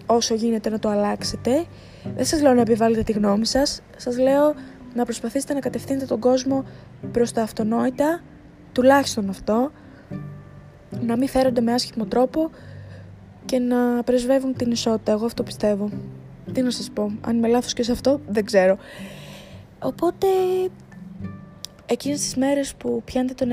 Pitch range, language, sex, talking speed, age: 210-255 Hz, Greek, female, 150 wpm, 20-39